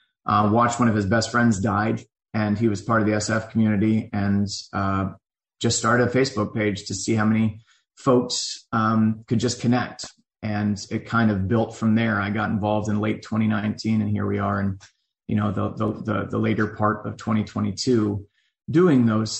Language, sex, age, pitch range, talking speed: English, male, 30-49, 105-115 Hz, 190 wpm